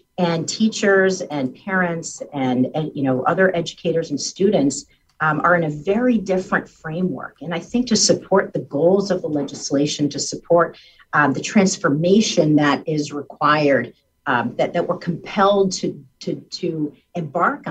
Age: 50-69